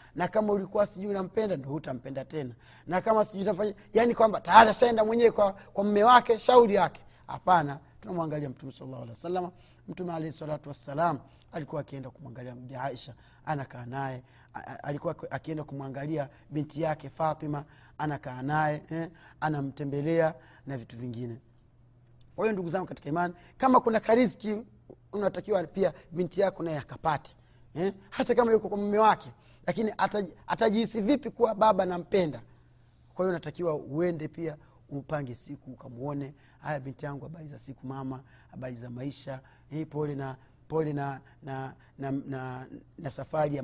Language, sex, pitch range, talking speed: Swahili, male, 135-190 Hz, 145 wpm